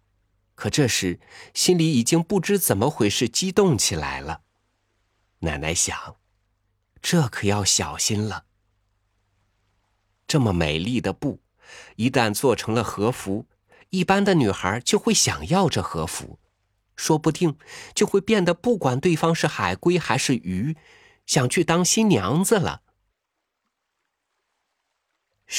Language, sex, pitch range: Chinese, male, 95-160 Hz